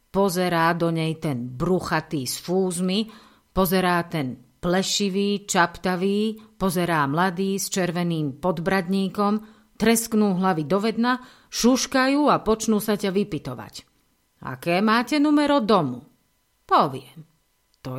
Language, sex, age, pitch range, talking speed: Slovak, female, 50-69, 155-210 Hz, 105 wpm